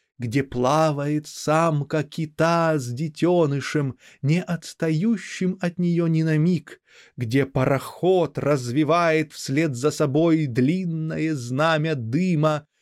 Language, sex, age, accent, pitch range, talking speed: Russian, male, 20-39, native, 140-175 Hz, 100 wpm